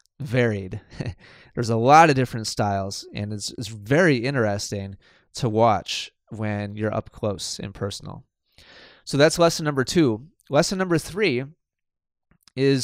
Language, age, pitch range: English, 20-39, 110-140 Hz